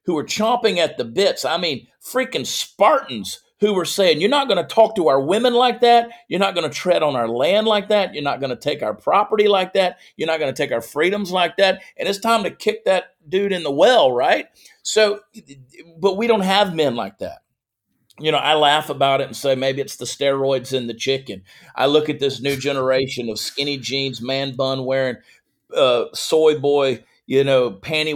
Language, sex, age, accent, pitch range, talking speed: English, male, 40-59, American, 135-210 Hz, 220 wpm